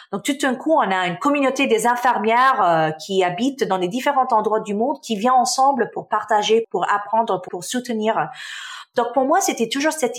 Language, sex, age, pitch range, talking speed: French, female, 40-59, 185-255 Hz, 205 wpm